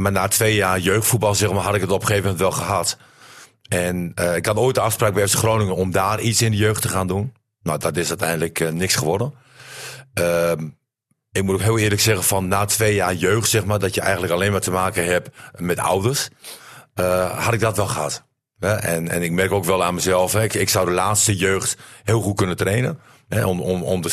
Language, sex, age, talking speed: Dutch, male, 50-69, 230 wpm